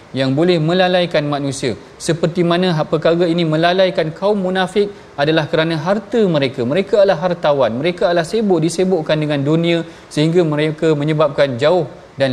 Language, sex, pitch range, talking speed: Malayalam, male, 140-175 Hz, 145 wpm